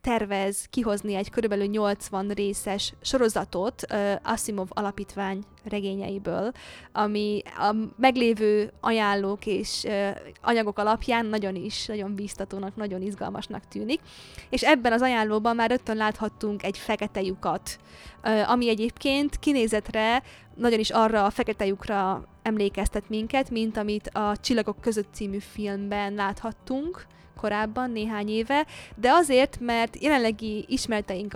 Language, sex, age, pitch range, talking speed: Hungarian, female, 20-39, 200-235 Hz, 120 wpm